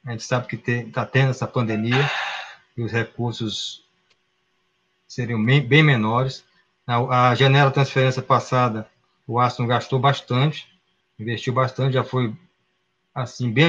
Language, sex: Portuguese, male